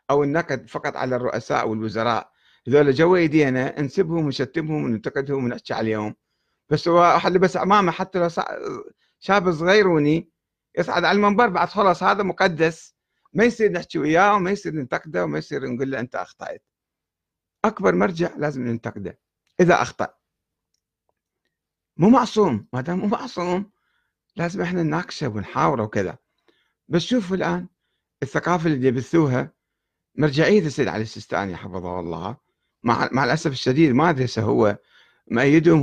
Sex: male